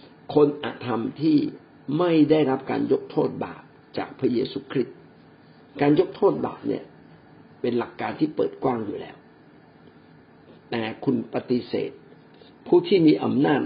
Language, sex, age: Thai, male, 60-79